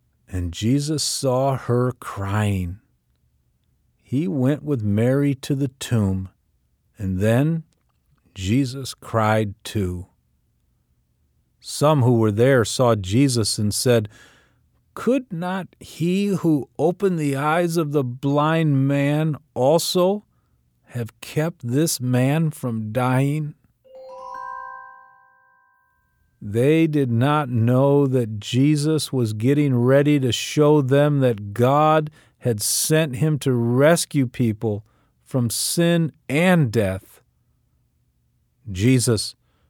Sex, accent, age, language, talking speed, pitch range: male, American, 50-69, English, 105 wpm, 100-150 Hz